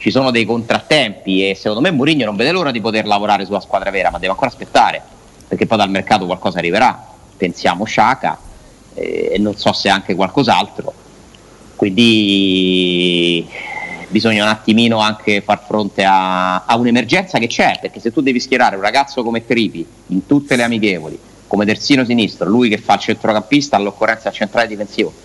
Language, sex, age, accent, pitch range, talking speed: Italian, male, 40-59, native, 100-120 Hz, 170 wpm